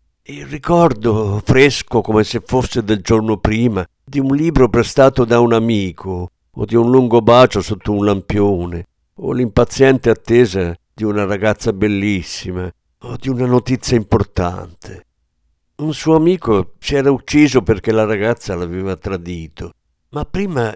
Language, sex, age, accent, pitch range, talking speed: Italian, male, 50-69, native, 90-120 Hz, 140 wpm